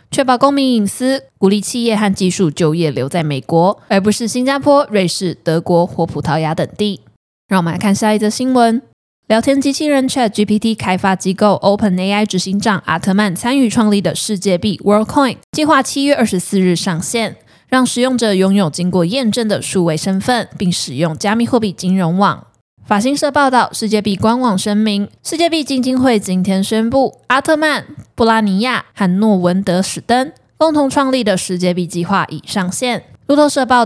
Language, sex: Chinese, female